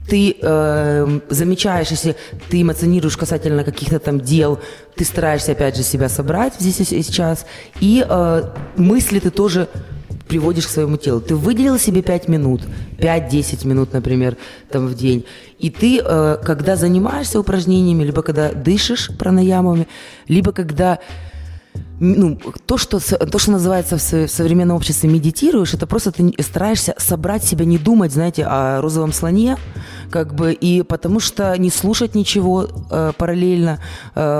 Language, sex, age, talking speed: Russian, female, 20-39, 145 wpm